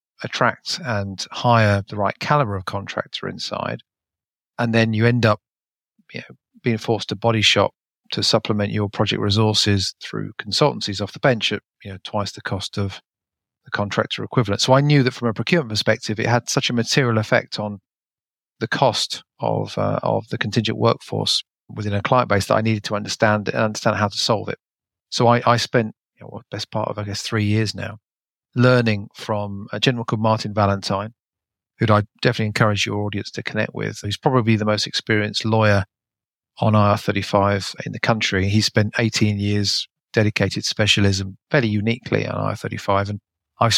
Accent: British